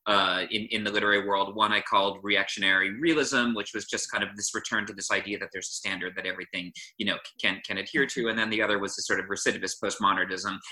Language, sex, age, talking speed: English, male, 30-49, 240 wpm